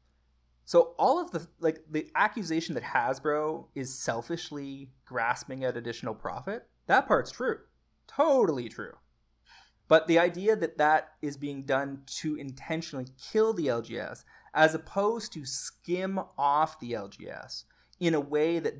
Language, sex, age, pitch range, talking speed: English, male, 30-49, 115-150 Hz, 140 wpm